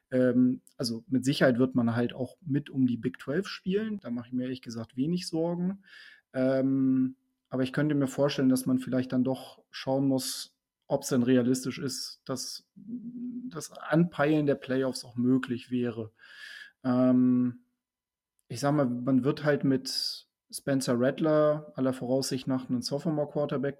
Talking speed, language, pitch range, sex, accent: 155 wpm, German, 130-155 Hz, male, German